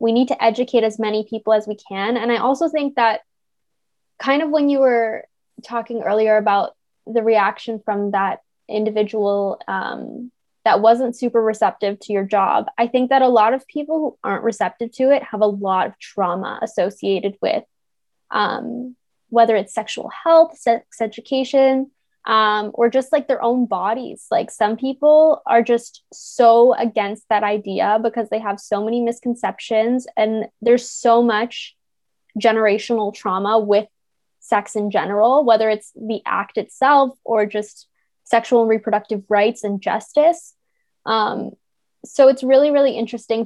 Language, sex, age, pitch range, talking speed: English, female, 10-29, 215-255 Hz, 155 wpm